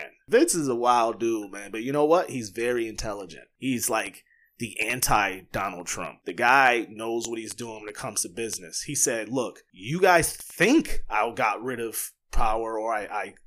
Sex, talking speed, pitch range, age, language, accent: male, 190 wpm, 120-155 Hz, 20-39, English, American